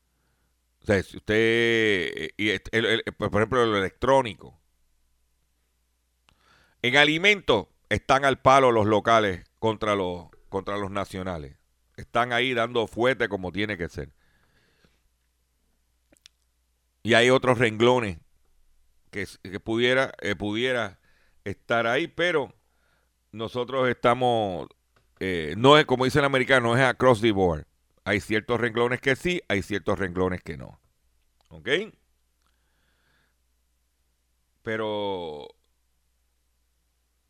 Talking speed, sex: 105 wpm, male